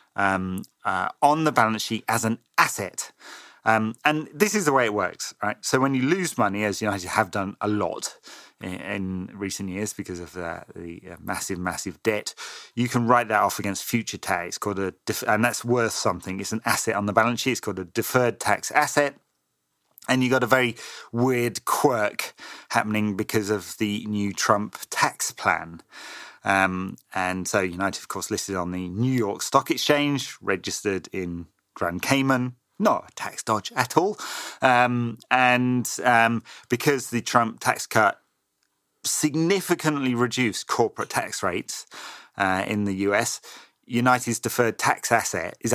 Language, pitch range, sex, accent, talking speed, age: English, 100-125 Hz, male, British, 175 wpm, 30-49